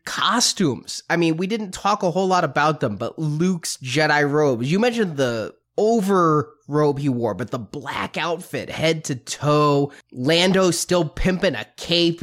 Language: English